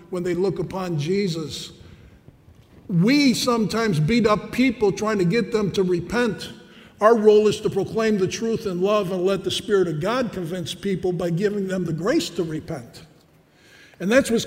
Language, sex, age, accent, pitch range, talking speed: English, male, 50-69, American, 190-245 Hz, 180 wpm